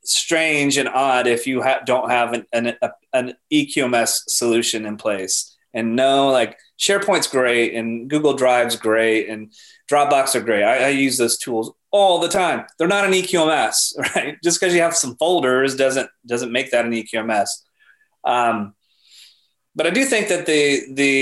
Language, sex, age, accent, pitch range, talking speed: English, male, 30-49, American, 115-145 Hz, 175 wpm